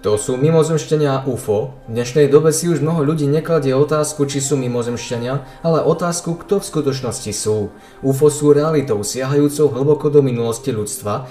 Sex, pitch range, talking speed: male, 115-145 Hz, 165 wpm